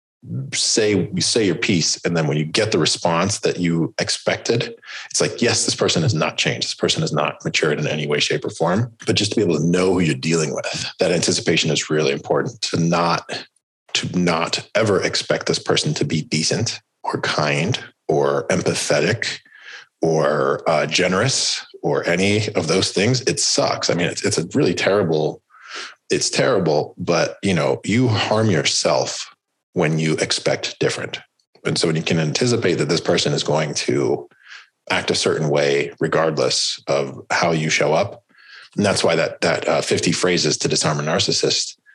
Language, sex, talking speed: English, male, 185 wpm